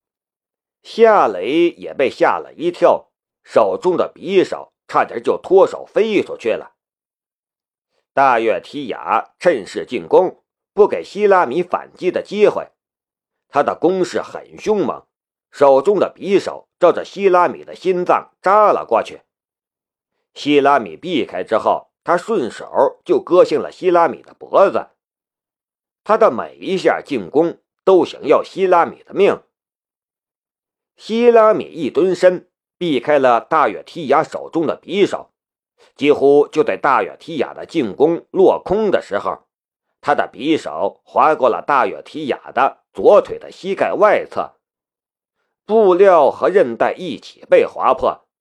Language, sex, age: Chinese, male, 50-69